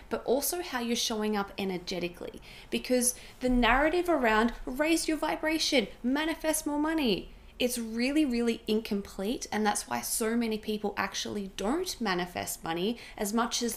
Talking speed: 150 wpm